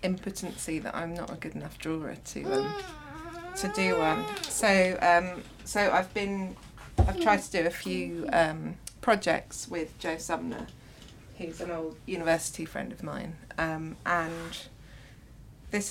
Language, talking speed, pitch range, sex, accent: English, 140 wpm, 135-175 Hz, female, British